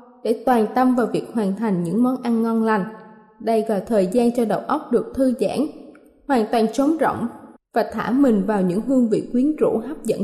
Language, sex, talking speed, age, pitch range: Vietnamese, female, 215 wpm, 20-39, 220-280 Hz